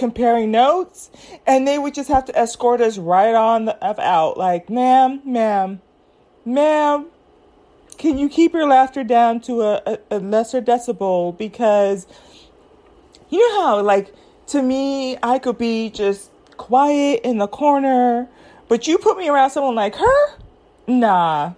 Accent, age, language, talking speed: American, 30-49, English, 150 wpm